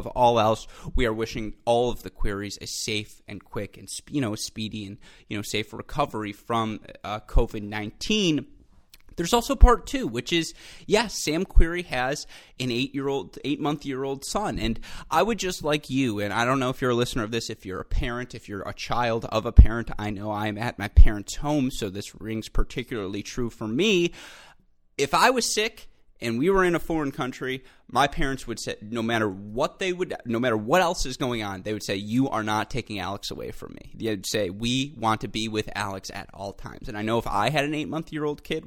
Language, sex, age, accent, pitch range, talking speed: English, male, 30-49, American, 105-135 Hz, 235 wpm